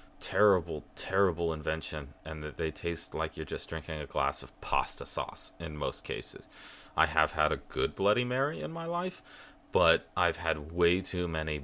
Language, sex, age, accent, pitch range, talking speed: English, male, 30-49, American, 75-95 Hz, 180 wpm